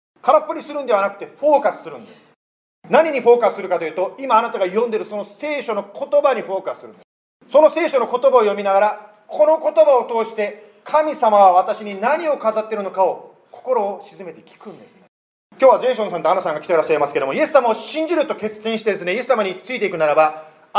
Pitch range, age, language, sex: 200-290 Hz, 40-59, Japanese, male